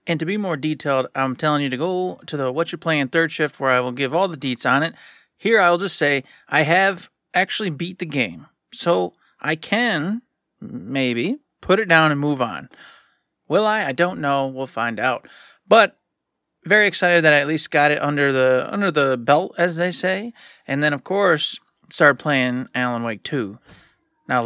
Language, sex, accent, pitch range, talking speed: English, male, American, 135-165 Hz, 200 wpm